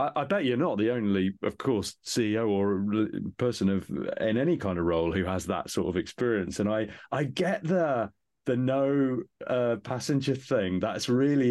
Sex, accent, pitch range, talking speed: male, British, 90-110 Hz, 180 wpm